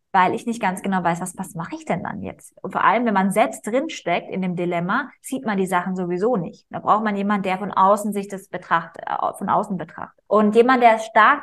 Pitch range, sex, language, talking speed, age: 185-235 Hz, female, German, 240 wpm, 20-39